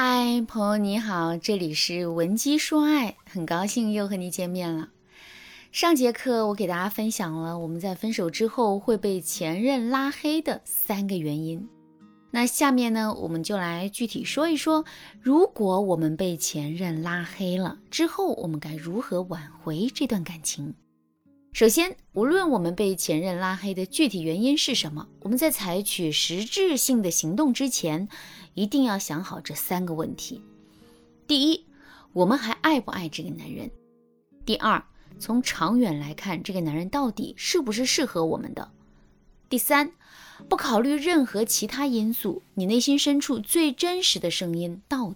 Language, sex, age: Chinese, female, 20-39